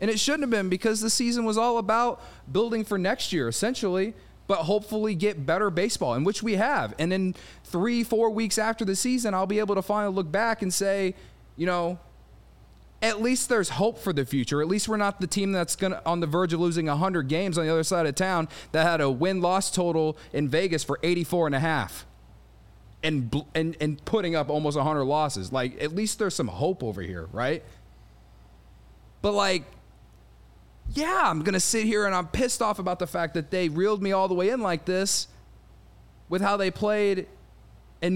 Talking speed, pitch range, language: 210 wpm, 160-220 Hz, English